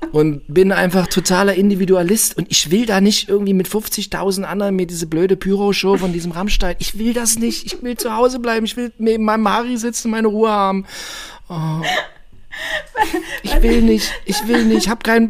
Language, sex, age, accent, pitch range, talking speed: German, male, 40-59, German, 155-210 Hz, 190 wpm